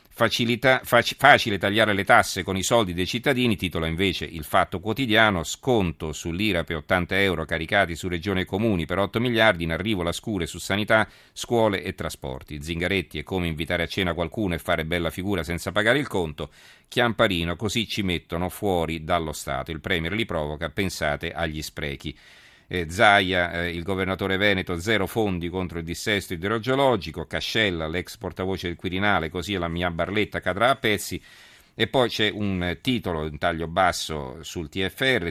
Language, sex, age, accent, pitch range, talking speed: Italian, male, 40-59, native, 85-105 Hz, 165 wpm